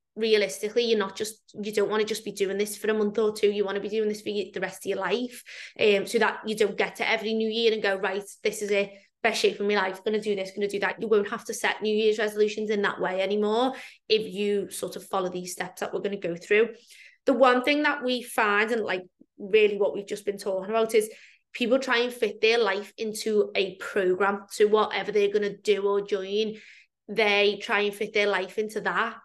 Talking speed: 250 wpm